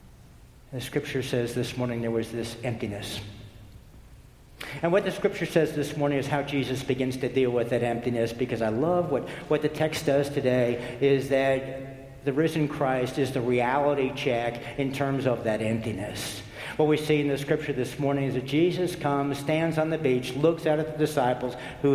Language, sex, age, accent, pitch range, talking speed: English, male, 60-79, American, 125-160 Hz, 190 wpm